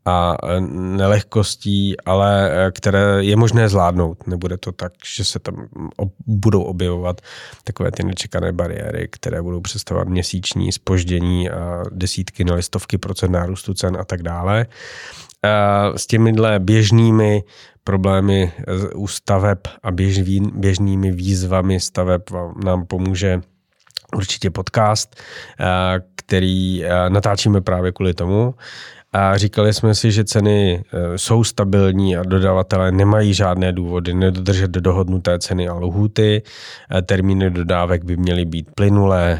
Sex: male